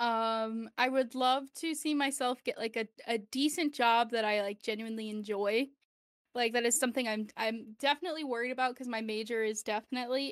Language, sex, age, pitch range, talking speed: English, female, 10-29, 225-275 Hz, 185 wpm